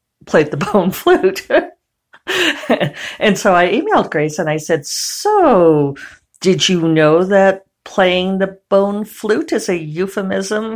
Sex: female